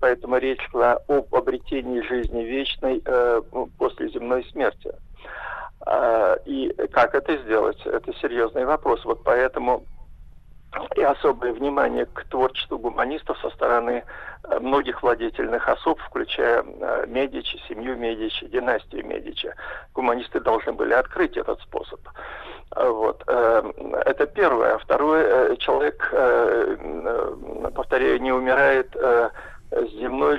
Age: 50-69